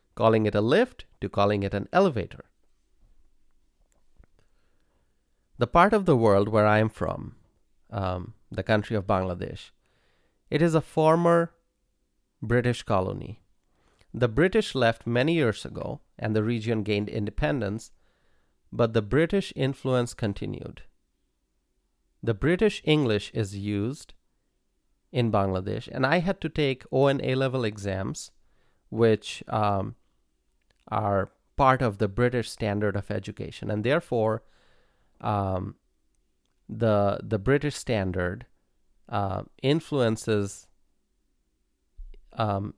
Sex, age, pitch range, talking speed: male, 30-49, 100-130 Hz, 110 wpm